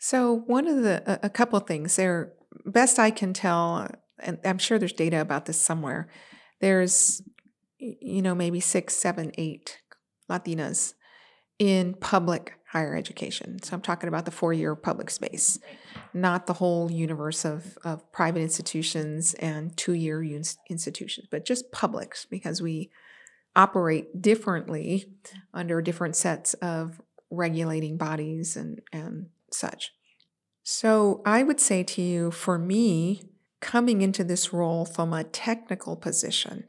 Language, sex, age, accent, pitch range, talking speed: English, female, 40-59, American, 170-205 Hz, 135 wpm